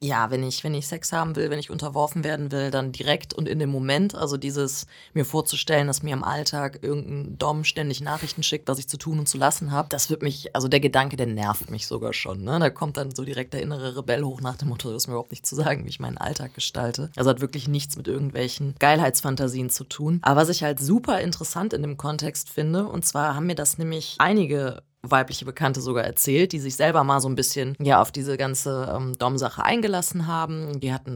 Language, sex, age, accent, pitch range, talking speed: German, female, 20-39, German, 130-160 Hz, 235 wpm